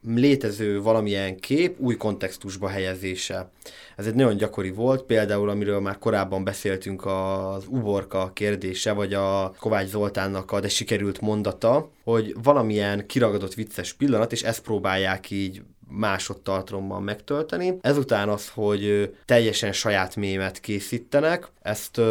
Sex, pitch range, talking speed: male, 100-120 Hz, 125 wpm